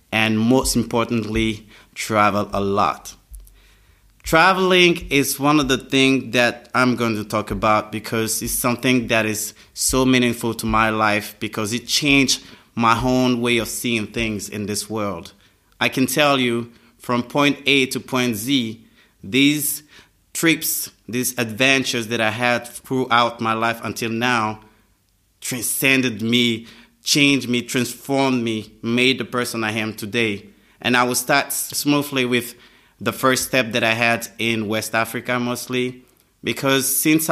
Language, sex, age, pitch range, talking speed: English, male, 30-49, 110-130 Hz, 150 wpm